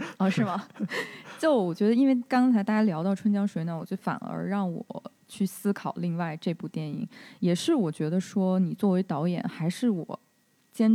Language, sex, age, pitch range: Chinese, female, 20-39, 170-215 Hz